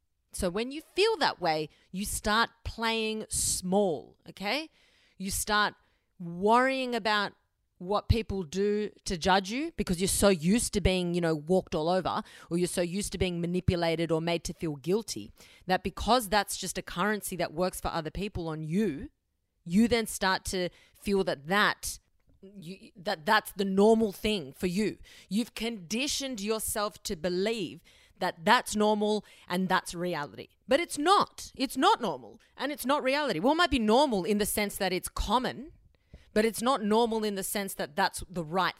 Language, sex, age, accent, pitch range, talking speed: English, female, 30-49, Australian, 185-225 Hz, 180 wpm